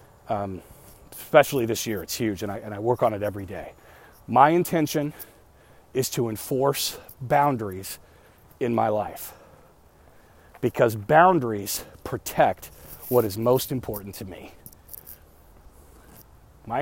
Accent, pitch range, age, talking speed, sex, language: American, 85-145 Hz, 40-59, 120 wpm, male, English